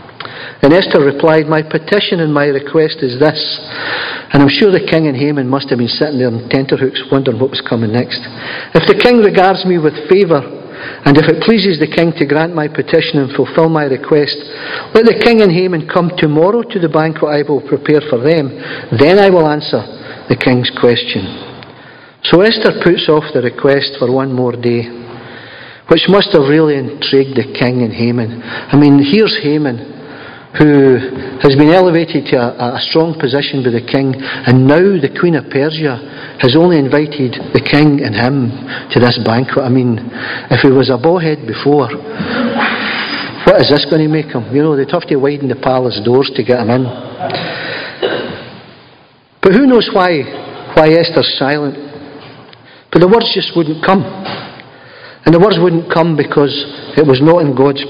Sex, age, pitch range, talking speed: male, 50-69, 130-165 Hz, 180 wpm